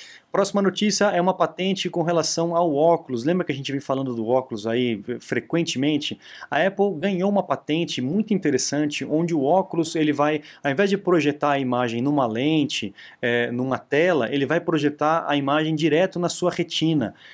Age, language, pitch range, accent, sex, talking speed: 20-39, Portuguese, 135-180 Hz, Brazilian, male, 175 wpm